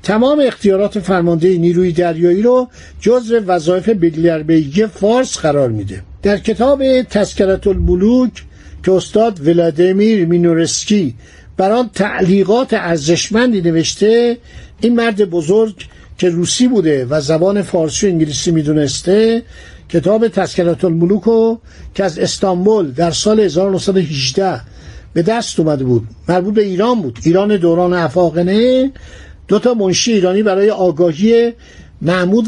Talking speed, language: 120 wpm, Persian